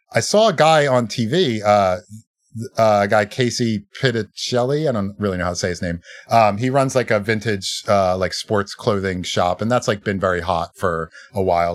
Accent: American